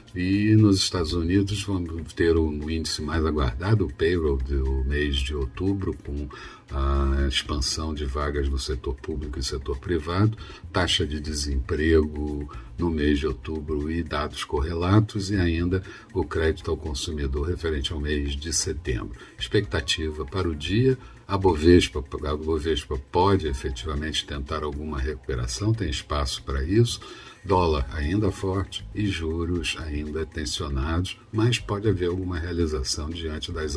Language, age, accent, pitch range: Portuguese, 60-79, Brazilian, 75-95 Hz